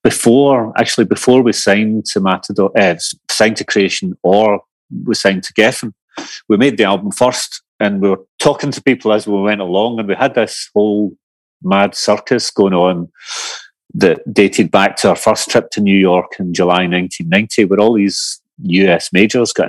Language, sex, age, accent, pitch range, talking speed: English, male, 30-49, British, 95-115 Hz, 180 wpm